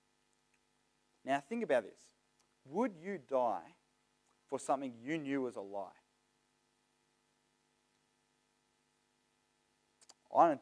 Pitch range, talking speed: 120-165 Hz, 90 wpm